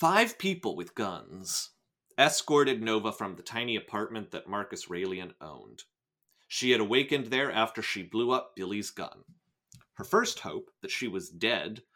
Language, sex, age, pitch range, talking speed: English, male, 30-49, 95-130 Hz, 155 wpm